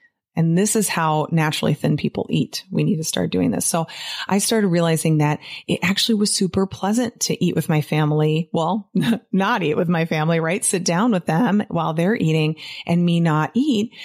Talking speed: 200 wpm